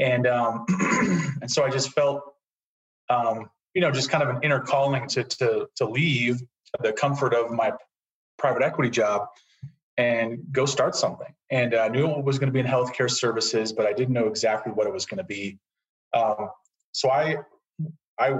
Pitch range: 120-145 Hz